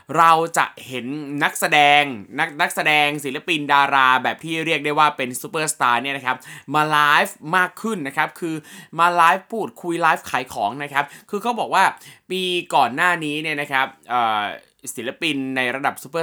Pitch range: 135-180 Hz